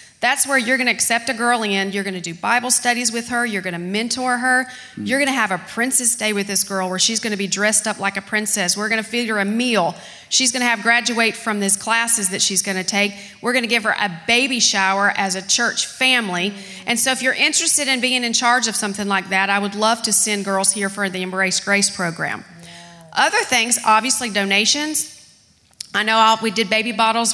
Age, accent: 40-59, American